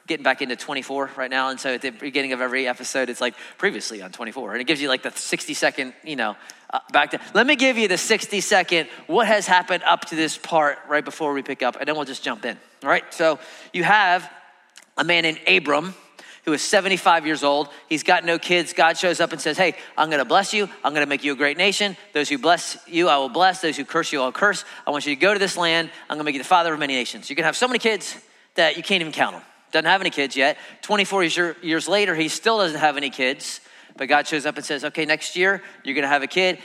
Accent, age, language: American, 30-49, English